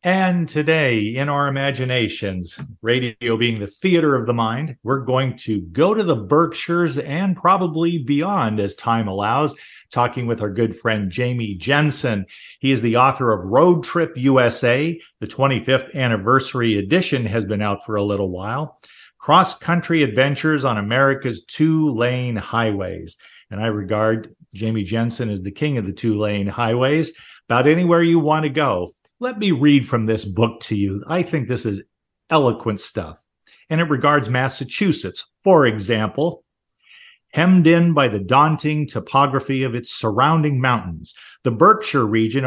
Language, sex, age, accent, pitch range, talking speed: English, male, 50-69, American, 110-150 Hz, 155 wpm